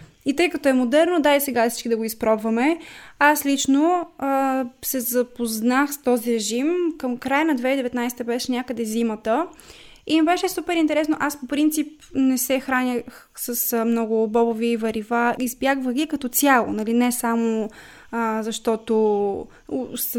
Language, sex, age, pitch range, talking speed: Bulgarian, female, 20-39, 235-280 Hz, 150 wpm